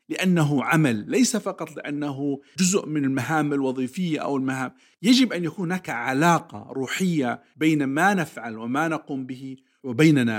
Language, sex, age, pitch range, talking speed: Arabic, male, 50-69, 130-170 Hz, 140 wpm